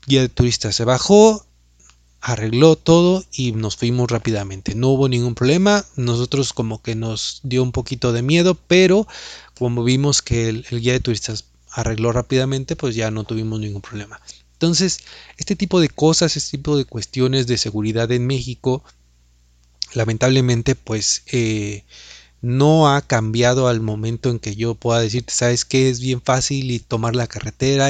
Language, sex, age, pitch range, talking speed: Spanish, male, 30-49, 115-140 Hz, 160 wpm